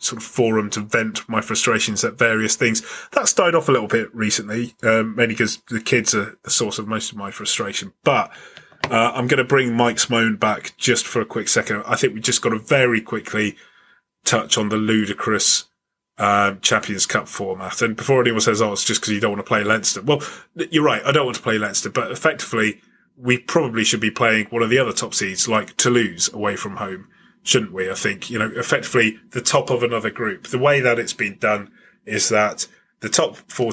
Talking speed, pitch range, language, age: 220 wpm, 110-125 Hz, English, 30-49